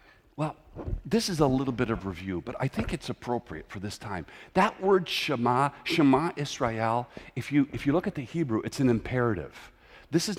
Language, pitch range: English, 115-180 Hz